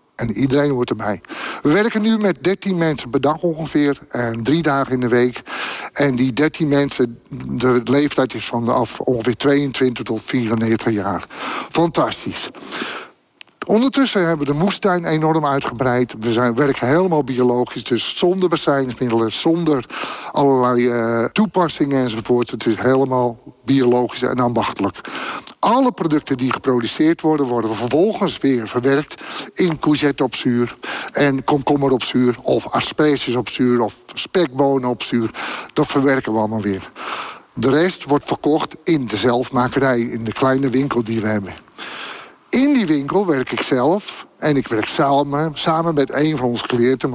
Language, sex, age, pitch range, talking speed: Dutch, male, 50-69, 120-150 Hz, 155 wpm